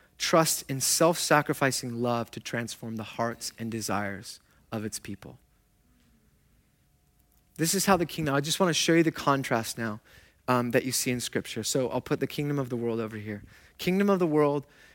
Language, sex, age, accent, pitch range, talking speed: English, male, 30-49, American, 115-180 Hz, 190 wpm